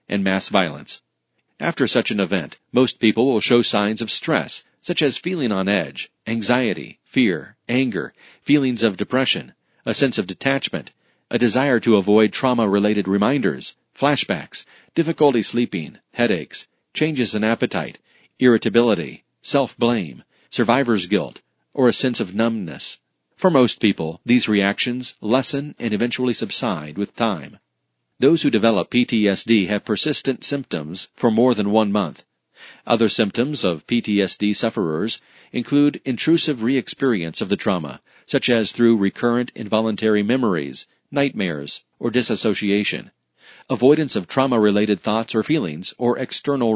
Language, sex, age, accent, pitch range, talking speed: English, male, 40-59, American, 105-125 Hz, 130 wpm